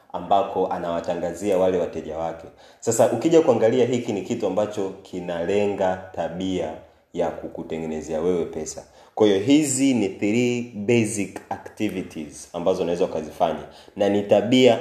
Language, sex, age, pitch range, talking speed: Swahili, male, 30-49, 90-105 Hz, 125 wpm